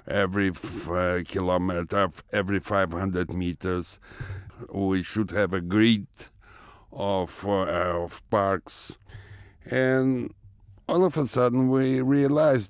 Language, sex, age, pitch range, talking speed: English, male, 60-79, 95-120 Hz, 110 wpm